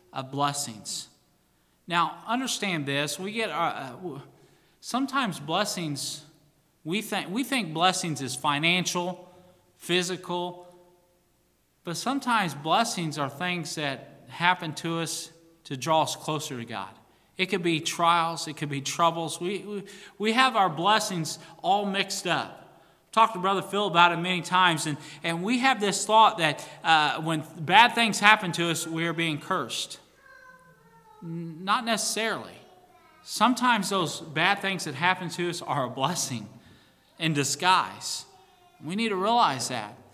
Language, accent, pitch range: English, American, 150-185 Hz